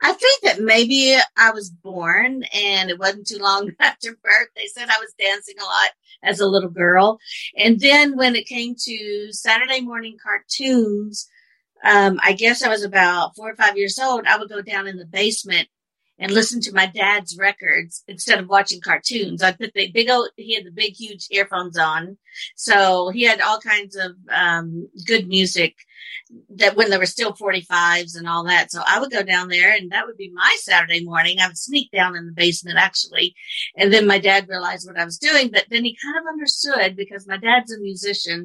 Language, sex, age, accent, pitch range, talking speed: English, female, 50-69, American, 185-225 Hz, 210 wpm